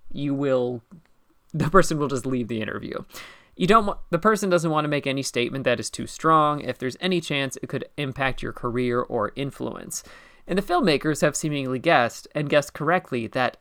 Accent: American